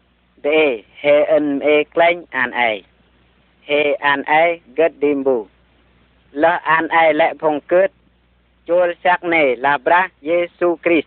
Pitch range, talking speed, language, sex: 110-160 Hz, 115 wpm, Vietnamese, female